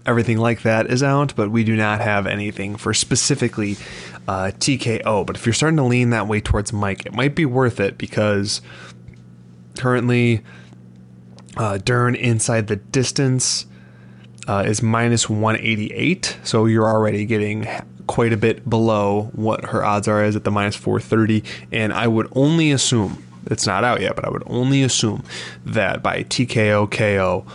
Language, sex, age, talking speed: English, male, 20-39, 165 wpm